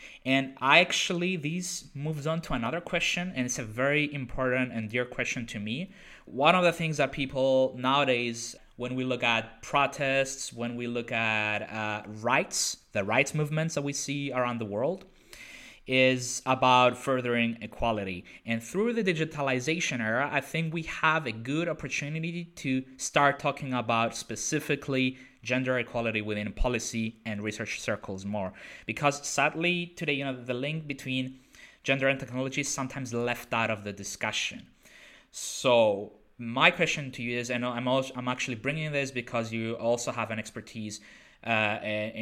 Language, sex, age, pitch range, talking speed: English, male, 20-39, 115-145 Hz, 160 wpm